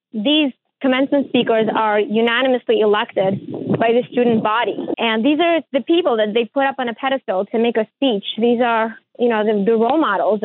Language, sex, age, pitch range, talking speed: English, female, 20-39, 225-270 Hz, 195 wpm